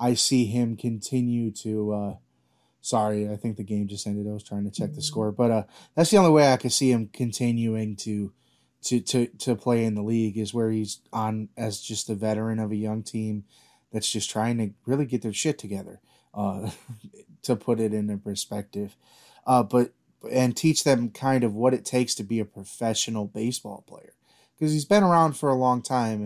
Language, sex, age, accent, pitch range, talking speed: English, male, 20-39, American, 105-125 Hz, 205 wpm